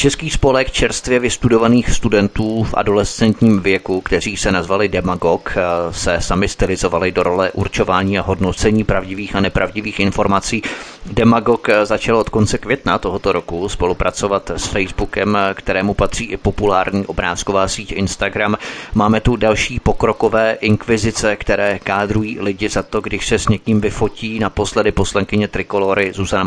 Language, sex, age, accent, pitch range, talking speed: Czech, male, 30-49, native, 100-120 Hz, 140 wpm